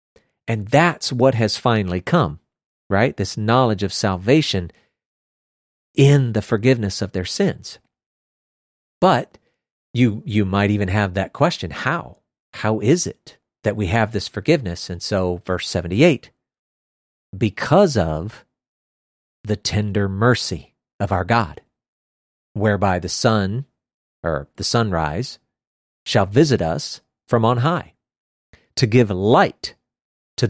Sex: male